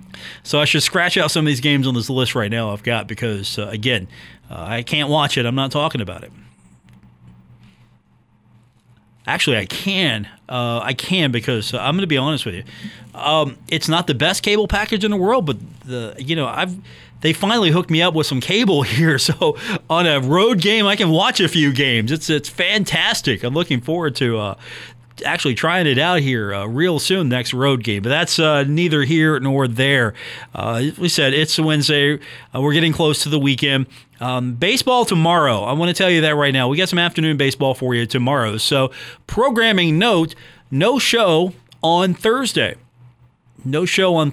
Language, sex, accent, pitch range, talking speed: English, male, American, 125-165 Hz, 200 wpm